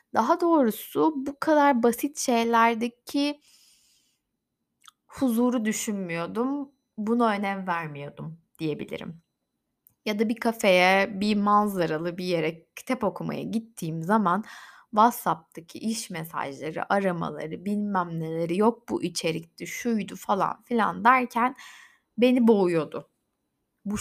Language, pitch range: Turkish, 180-255 Hz